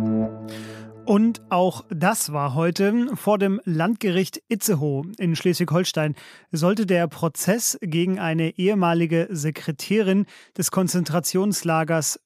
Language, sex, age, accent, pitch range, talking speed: German, male, 30-49, German, 160-200 Hz, 100 wpm